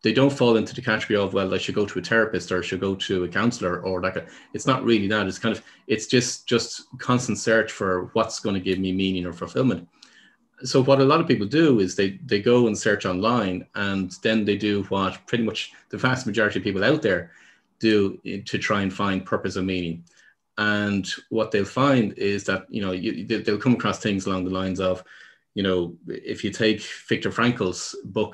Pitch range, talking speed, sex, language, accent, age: 95-115 Hz, 220 wpm, male, English, Irish, 30-49